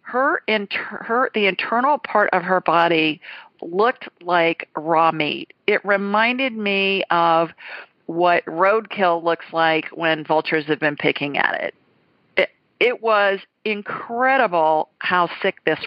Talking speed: 130 wpm